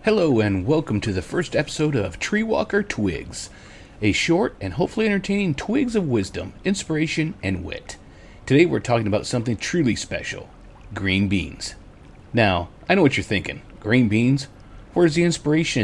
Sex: male